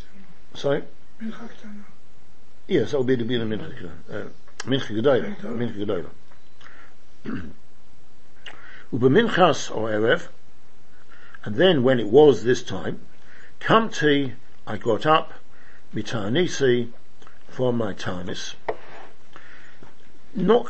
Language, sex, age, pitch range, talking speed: English, male, 60-79, 110-150 Hz, 80 wpm